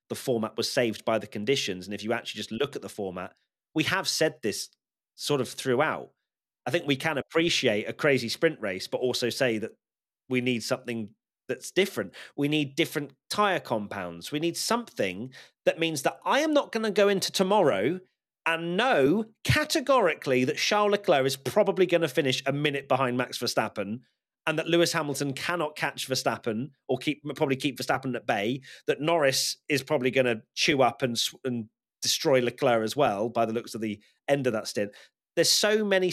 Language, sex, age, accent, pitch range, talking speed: English, male, 30-49, British, 115-165 Hz, 195 wpm